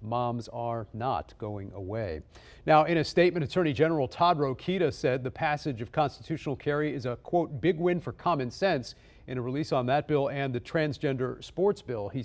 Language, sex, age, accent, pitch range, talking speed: English, male, 40-59, American, 120-150 Hz, 190 wpm